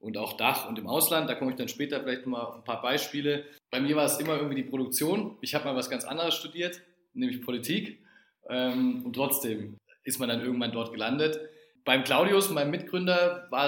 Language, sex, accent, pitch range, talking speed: German, male, German, 120-150 Hz, 205 wpm